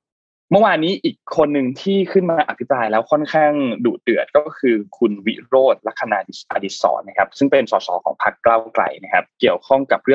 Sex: male